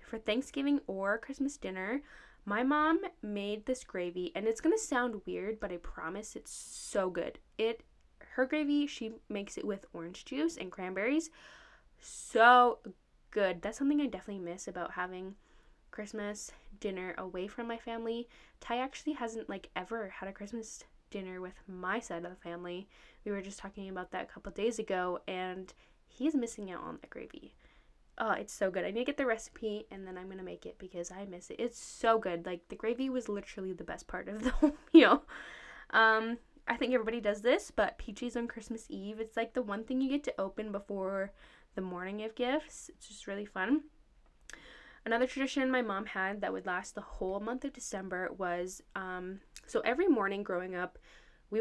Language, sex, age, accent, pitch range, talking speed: English, female, 10-29, American, 190-250 Hz, 190 wpm